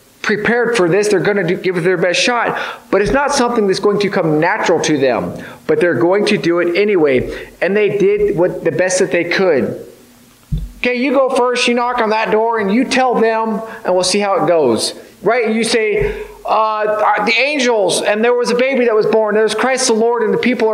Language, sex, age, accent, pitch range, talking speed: English, male, 40-59, American, 205-255 Hz, 225 wpm